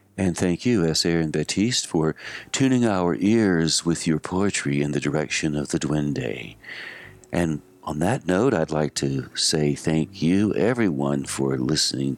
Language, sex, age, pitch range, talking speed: English, male, 60-79, 75-105 Hz, 160 wpm